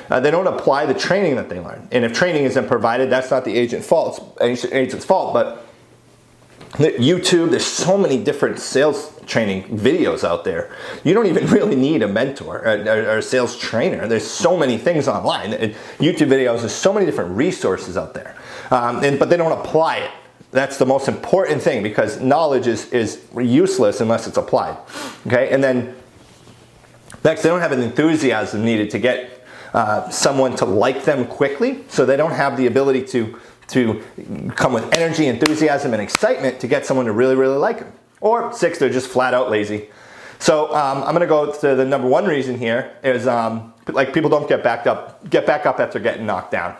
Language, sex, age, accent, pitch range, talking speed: English, male, 30-49, American, 120-155 Hz, 195 wpm